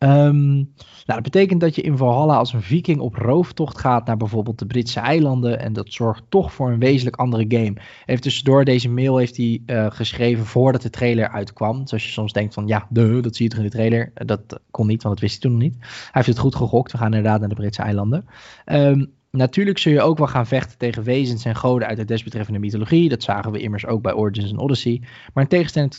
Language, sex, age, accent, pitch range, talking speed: Dutch, male, 20-39, Dutch, 110-130 Hz, 230 wpm